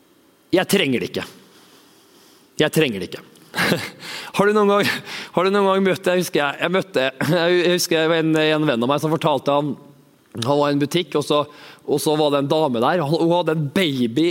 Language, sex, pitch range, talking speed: English, male, 155-195 Hz, 175 wpm